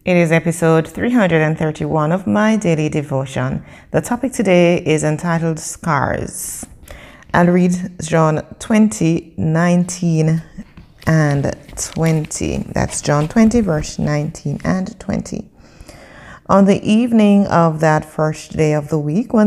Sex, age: female, 30-49